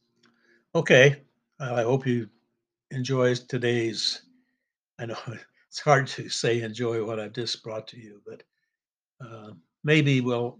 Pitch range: 115-135 Hz